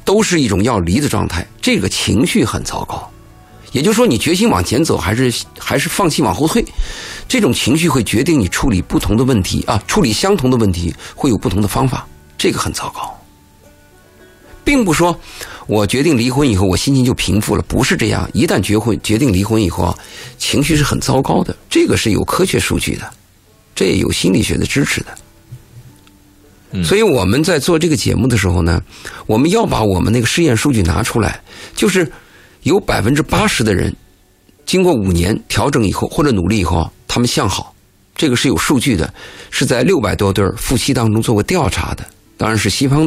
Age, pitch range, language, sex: 50-69, 95-130 Hz, Chinese, male